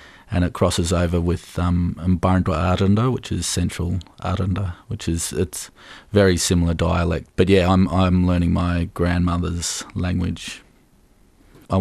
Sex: male